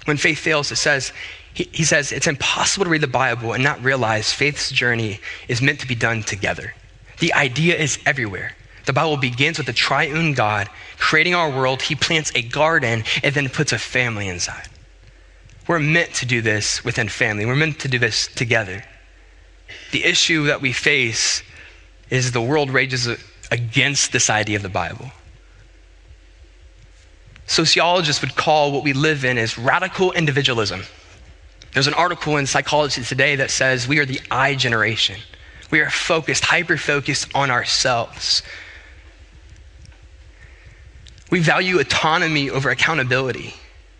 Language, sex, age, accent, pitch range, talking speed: English, male, 20-39, American, 105-145 Hz, 150 wpm